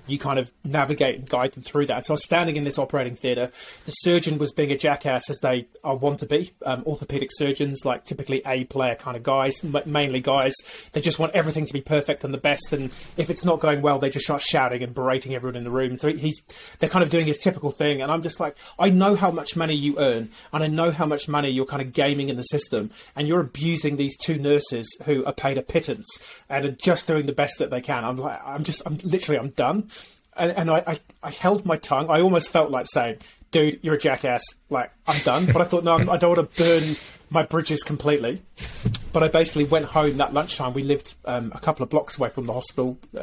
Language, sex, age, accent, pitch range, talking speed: English, male, 30-49, British, 135-160 Hz, 245 wpm